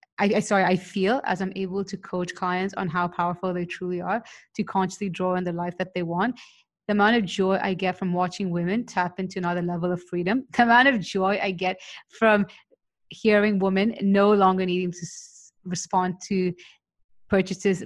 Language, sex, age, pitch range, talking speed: English, female, 20-39, 180-200 Hz, 190 wpm